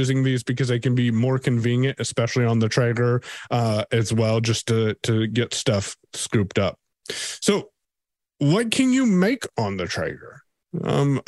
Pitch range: 115-155 Hz